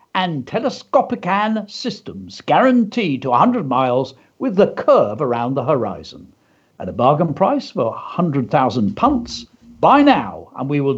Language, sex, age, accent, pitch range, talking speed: English, male, 60-79, British, 140-195 Hz, 135 wpm